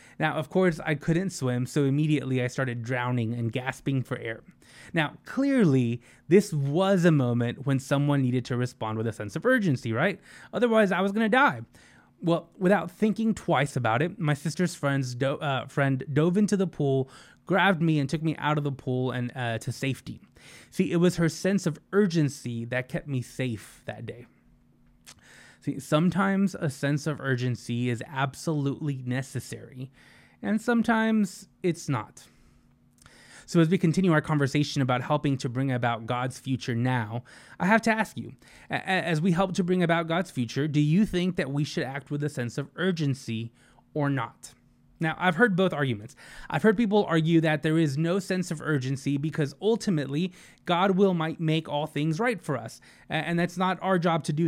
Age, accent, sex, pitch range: 20-39, American, male, 130-180 Hz